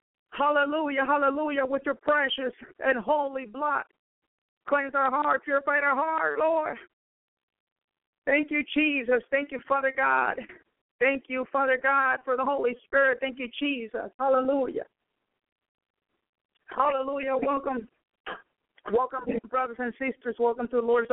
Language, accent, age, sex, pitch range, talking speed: English, American, 50-69, female, 250-290 Hz, 125 wpm